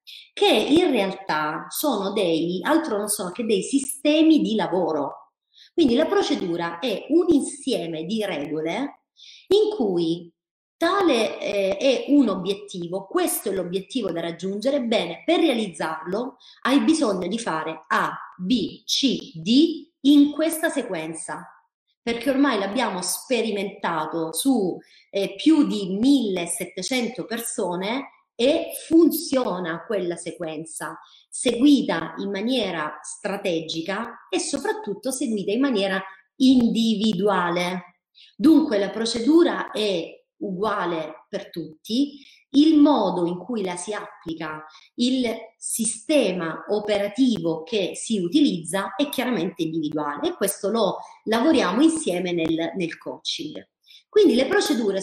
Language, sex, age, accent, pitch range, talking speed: Italian, female, 30-49, native, 180-280 Hz, 115 wpm